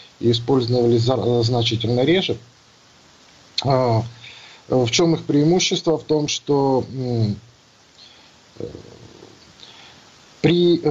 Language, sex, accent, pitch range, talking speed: Ukrainian, male, native, 115-145 Hz, 60 wpm